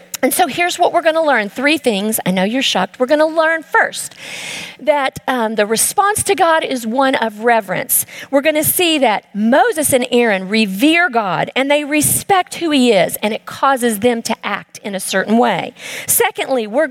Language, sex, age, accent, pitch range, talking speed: English, female, 50-69, American, 230-305 Hz, 190 wpm